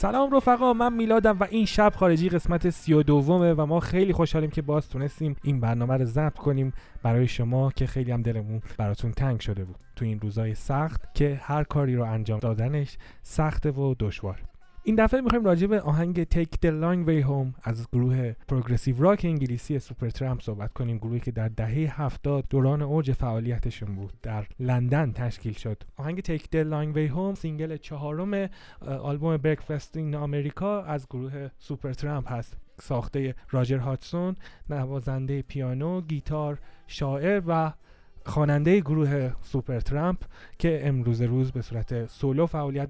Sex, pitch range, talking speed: male, 120-155 Hz, 160 wpm